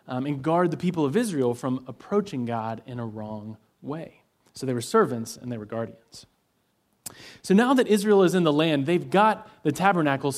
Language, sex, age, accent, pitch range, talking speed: English, male, 30-49, American, 130-175 Hz, 190 wpm